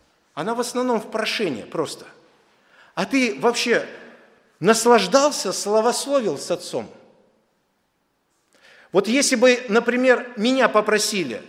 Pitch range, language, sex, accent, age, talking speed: 180-240 Hz, Russian, male, native, 50-69, 100 wpm